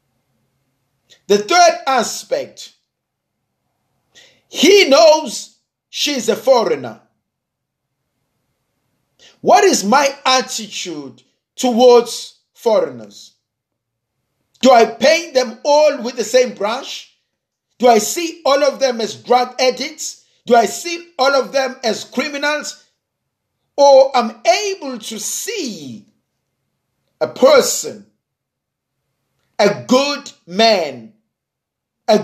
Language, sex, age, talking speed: English, male, 50-69, 95 wpm